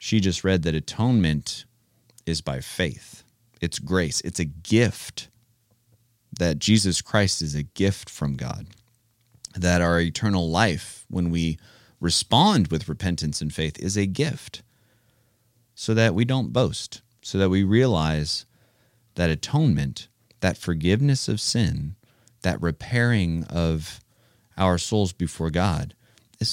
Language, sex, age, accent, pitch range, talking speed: English, male, 30-49, American, 95-120 Hz, 130 wpm